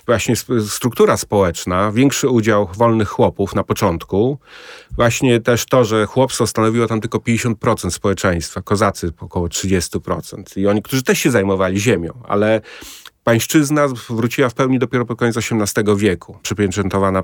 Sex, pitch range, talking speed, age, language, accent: male, 100-120 Hz, 140 wpm, 30-49, Polish, native